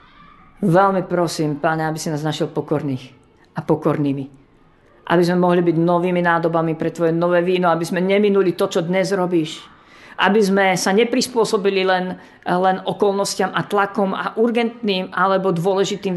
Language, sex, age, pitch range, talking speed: Slovak, female, 40-59, 170-200 Hz, 150 wpm